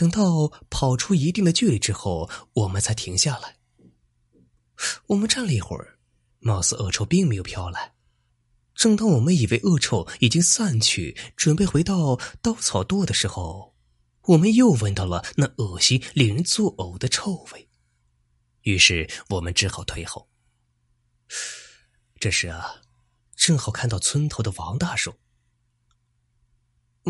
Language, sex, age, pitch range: Chinese, male, 20-39, 100-155 Hz